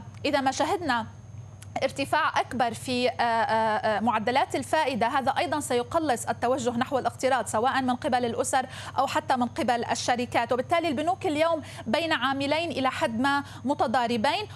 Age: 30-49